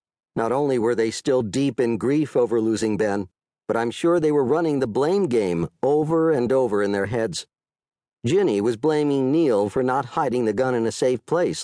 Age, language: 50-69, English